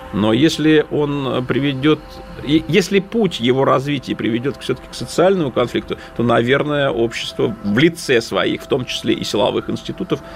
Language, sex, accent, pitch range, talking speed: Russian, male, native, 125-165 Hz, 145 wpm